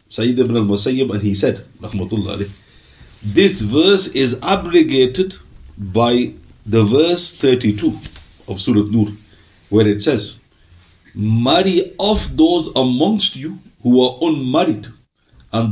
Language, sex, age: English, male, 50-69